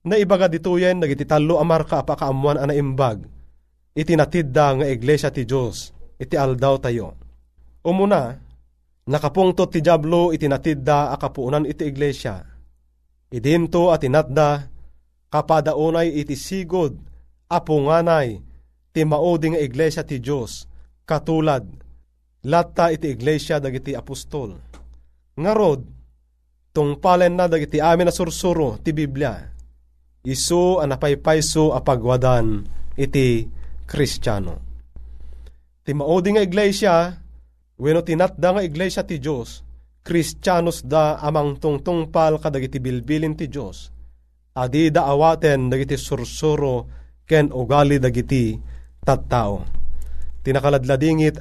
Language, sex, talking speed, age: Filipino, male, 100 wpm, 30-49